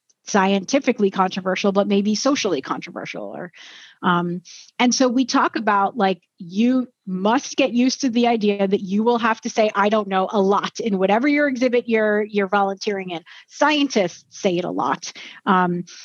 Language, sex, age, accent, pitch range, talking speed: English, female, 30-49, American, 190-245 Hz, 170 wpm